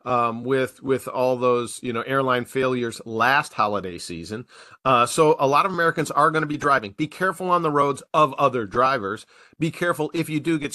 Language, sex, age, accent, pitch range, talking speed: English, male, 40-59, American, 120-160 Hz, 205 wpm